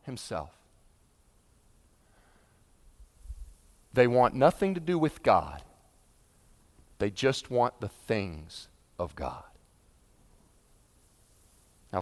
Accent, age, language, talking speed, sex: American, 40-59, English, 80 wpm, male